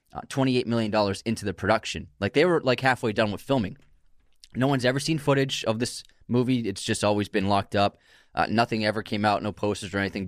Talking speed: 220 wpm